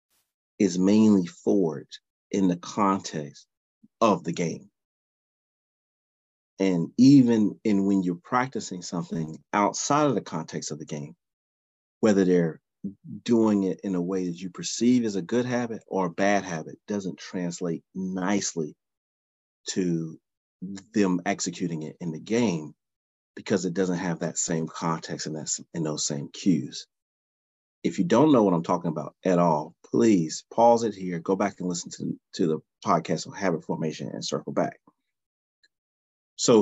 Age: 40-59